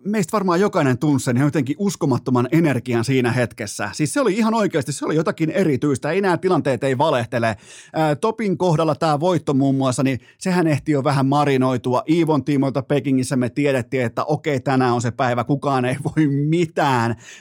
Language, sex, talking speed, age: Finnish, male, 175 wpm, 30-49